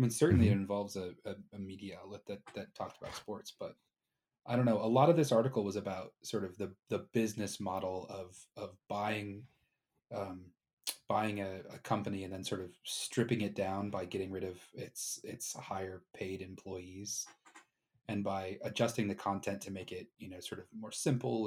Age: 30-49